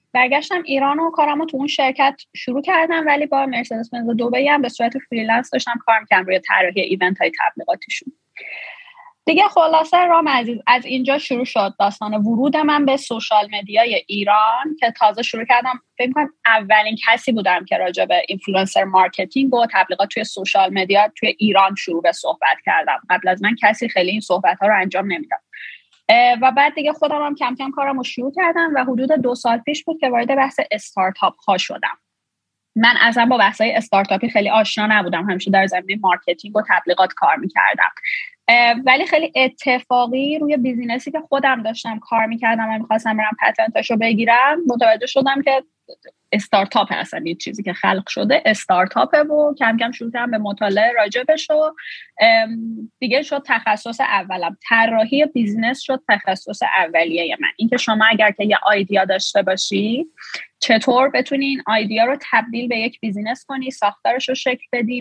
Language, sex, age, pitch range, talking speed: Persian, female, 20-39, 210-275 Hz, 170 wpm